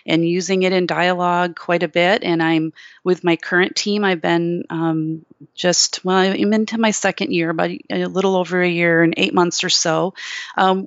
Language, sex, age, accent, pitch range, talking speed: English, female, 40-59, American, 170-195 Hz, 200 wpm